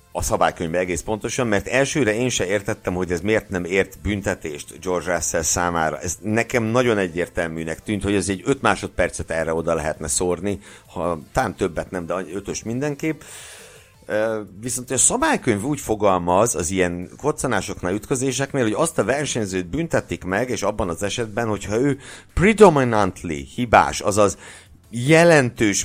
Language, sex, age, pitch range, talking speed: Hungarian, male, 60-79, 90-125 Hz, 150 wpm